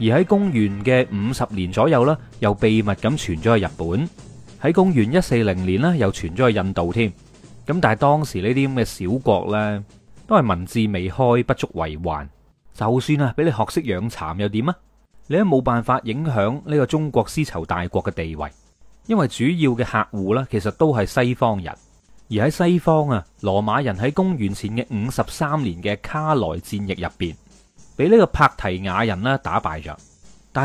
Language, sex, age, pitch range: Chinese, male, 30-49, 95-140 Hz